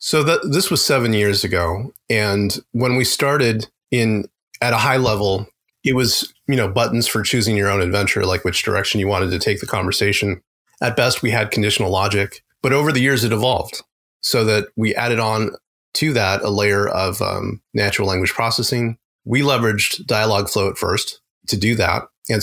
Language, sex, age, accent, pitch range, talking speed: English, male, 30-49, American, 95-115 Hz, 185 wpm